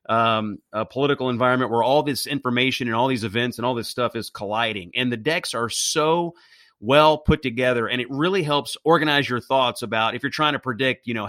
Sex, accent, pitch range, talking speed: male, American, 115-140 Hz, 220 wpm